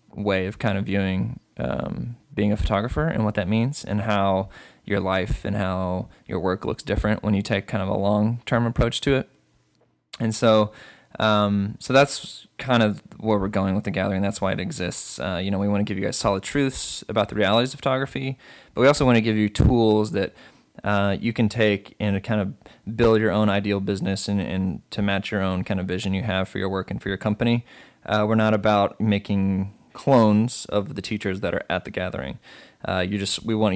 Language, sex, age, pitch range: English, male, 20-39, 100-115 Hz